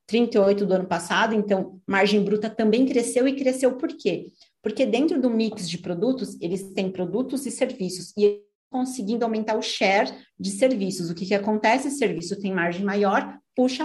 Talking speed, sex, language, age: 180 wpm, female, Portuguese, 40-59